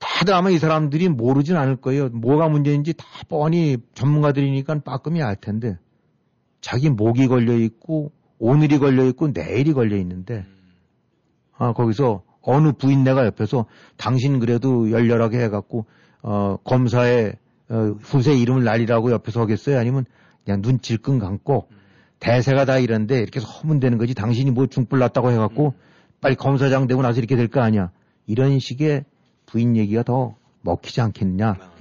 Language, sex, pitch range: Korean, male, 115-140 Hz